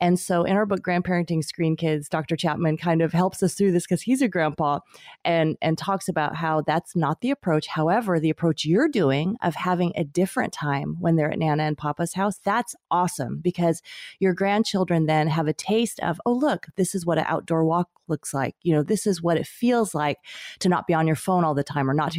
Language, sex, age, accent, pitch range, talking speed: English, female, 30-49, American, 155-190 Hz, 235 wpm